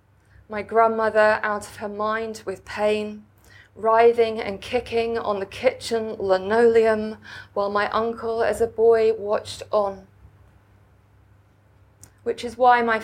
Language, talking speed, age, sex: English, 125 wpm, 20-39, female